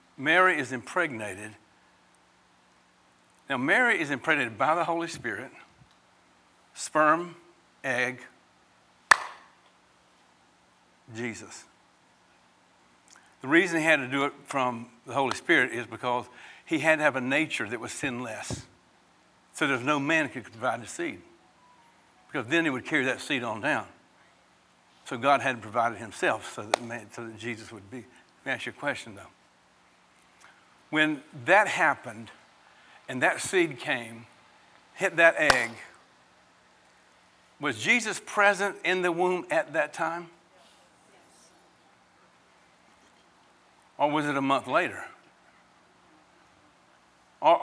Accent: American